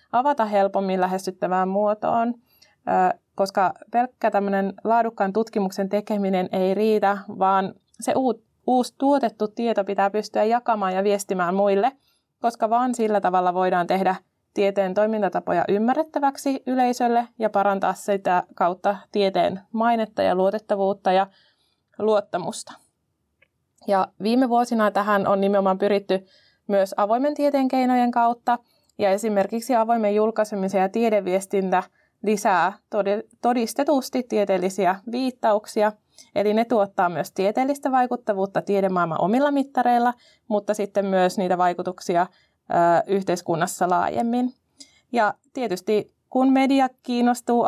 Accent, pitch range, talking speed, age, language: native, 195-235 Hz, 110 wpm, 20-39, Finnish